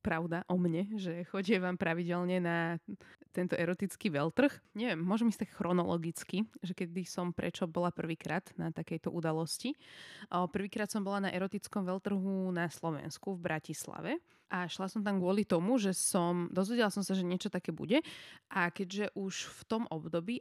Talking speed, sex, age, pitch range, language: 160 wpm, female, 20-39, 170-205 Hz, Slovak